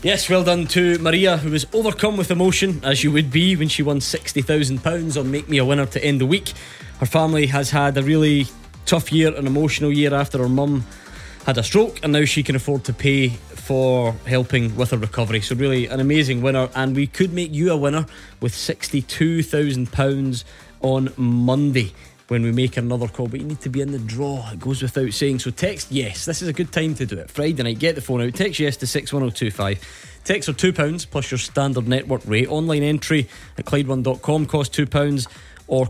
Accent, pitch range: British, 125-150 Hz